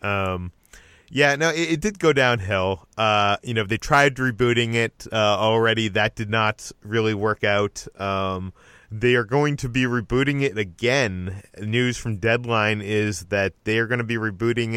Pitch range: 100-125 Hz